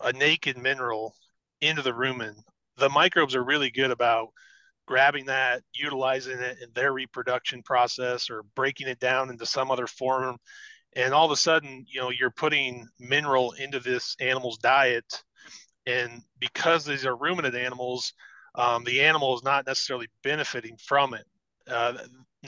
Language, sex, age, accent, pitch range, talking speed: English, male, 30-49, American, 120-140 Hz, 155 wpm